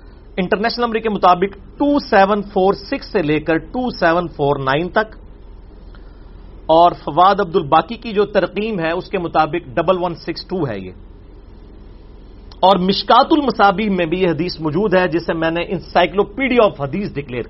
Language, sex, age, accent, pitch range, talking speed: English, male, 40-59, Indian, 145-200 Hz, 130 wpm